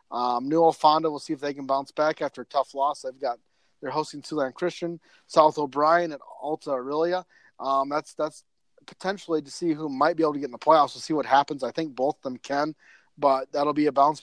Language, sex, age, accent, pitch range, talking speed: English, male, 30-49, American, 135-165 Hz, 230 wpm